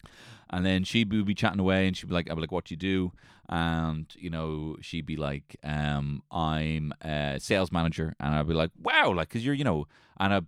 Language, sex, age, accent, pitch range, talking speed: English, male, 30-49, Irish, 80-115 Hz, 235 wpm